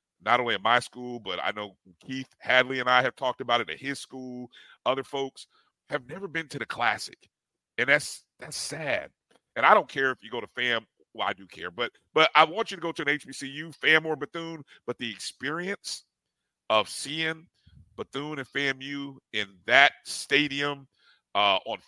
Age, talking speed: 50-69, 190 wpm